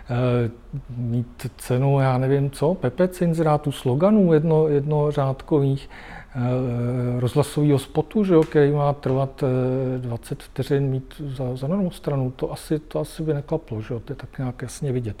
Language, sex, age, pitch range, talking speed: Czech, male, 50-69, 125-150 Hz, 145 wpm